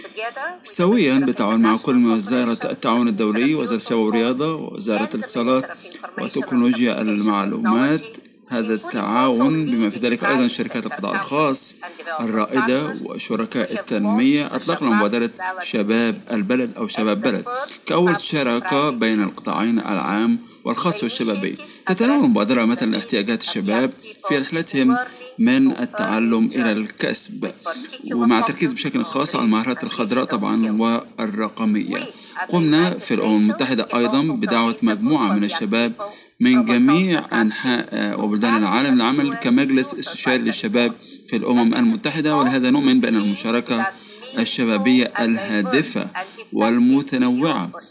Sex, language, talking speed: male, Arabic, 110 wpm